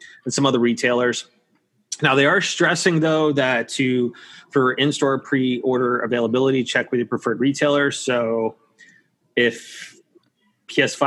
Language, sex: English, male